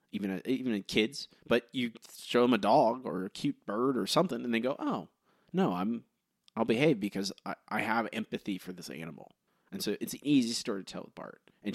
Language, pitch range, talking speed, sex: English, 105-145 Hz, 235 wpm, male